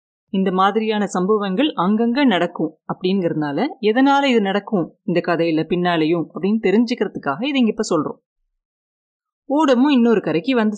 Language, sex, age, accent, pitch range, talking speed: Tamil, female, 30-49, native, 175-245 Hz, 115 wpm